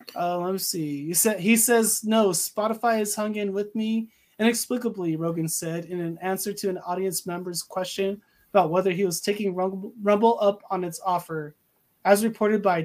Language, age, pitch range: English, 20-39, 180-220 Hz